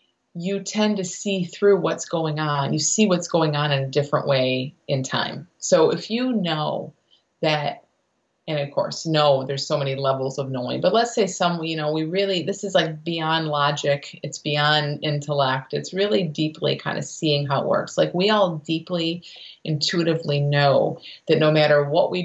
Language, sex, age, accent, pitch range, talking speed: English, female, 30-49, American, 150-195 Hz, 190 wpm